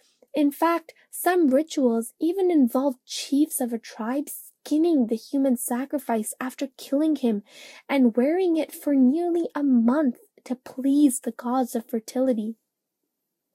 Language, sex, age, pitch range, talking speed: English, female, 10-29, 240-290 Hz, 135 wpm